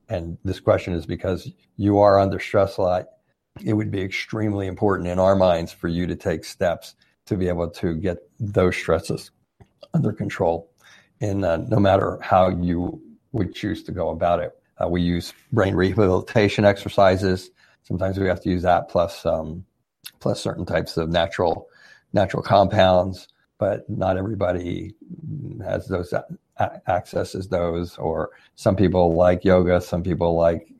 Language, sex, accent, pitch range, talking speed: English, male, American, 90-105 Hz, 160 wpm